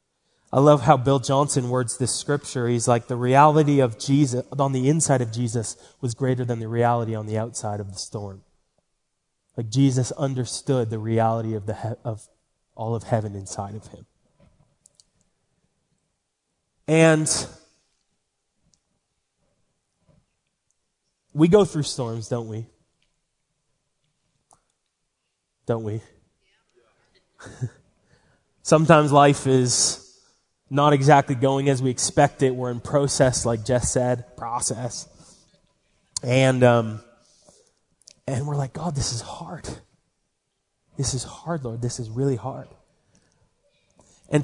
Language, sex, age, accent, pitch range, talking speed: English, male, 20-39, American, 115-145 Hz, 120 wpm